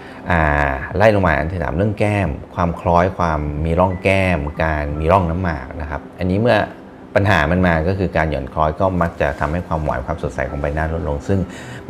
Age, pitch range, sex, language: 30-49, 75-90 Hz, male, Thai